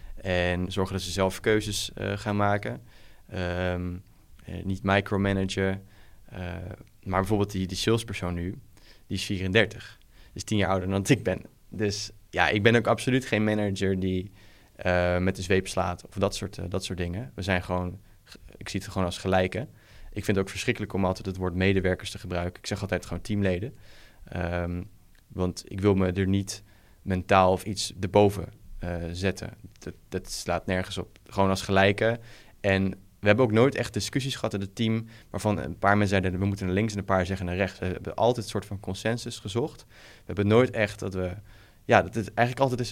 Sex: male